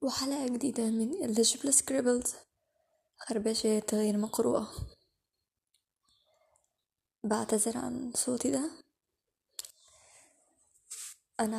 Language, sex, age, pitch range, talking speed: Arabic, female, 20-39, 225-345 Hz, 65 wpm